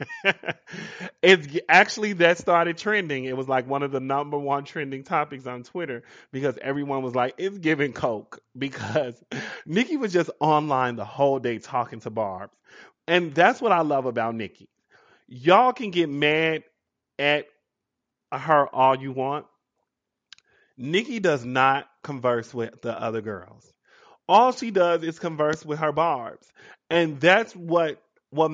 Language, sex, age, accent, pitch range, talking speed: English, male, 20-39, American, 135-210 Hz, 150 wpm